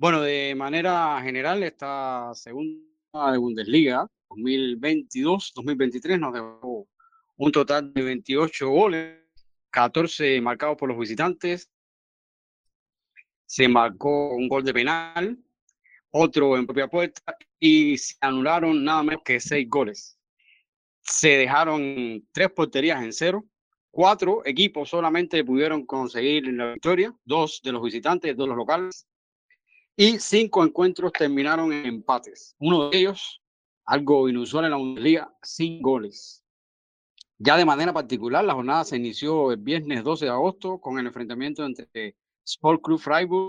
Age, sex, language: 30-49, male, Spanish